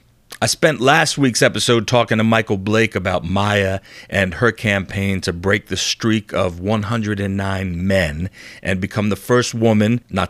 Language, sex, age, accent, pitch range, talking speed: English, male, 40-59, American, 95-120 Hz, 155 wpm